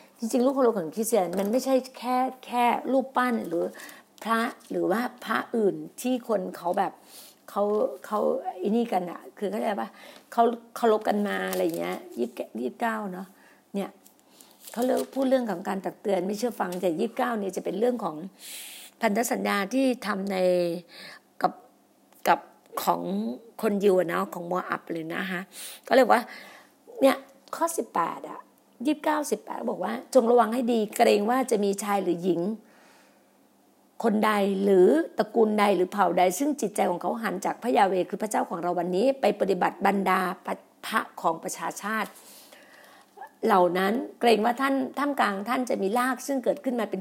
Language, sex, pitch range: Thai, female, 195-255 Hz